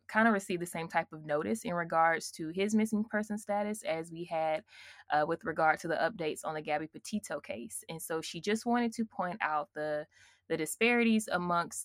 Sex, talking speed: female, 210 wpm